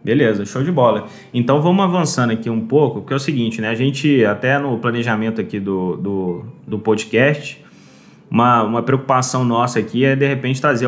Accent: Brazilian